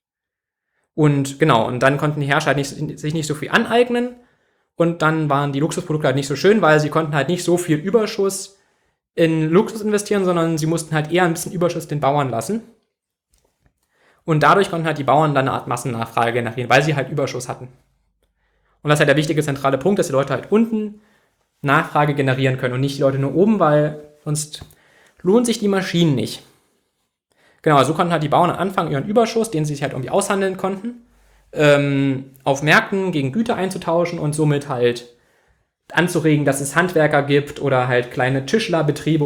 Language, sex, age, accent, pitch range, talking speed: German, male, 20-39, German, 140-185 Hz, 190 wpm